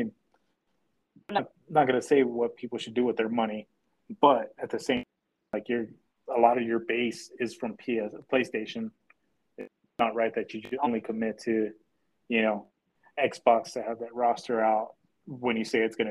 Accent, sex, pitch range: American, male, 110-120 Hz